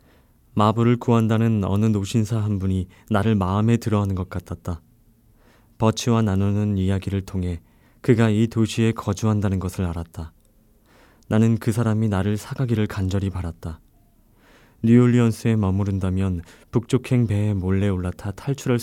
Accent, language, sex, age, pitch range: native, Korean, male, 20-39, 90-115 Hz